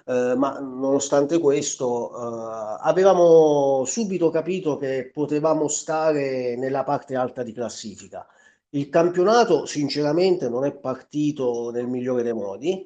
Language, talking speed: Italian, 120 wpm